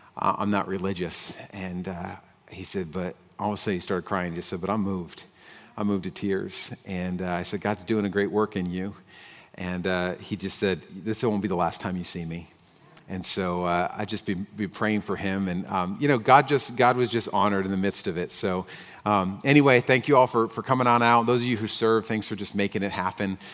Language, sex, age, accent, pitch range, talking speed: English, male, 40-59, American, 95-120 Hz, 245 wpm